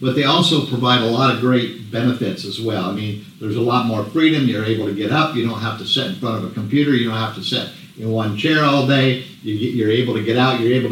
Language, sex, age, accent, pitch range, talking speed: English, male, 50-69, American, 115-145 Hz, 280 wpm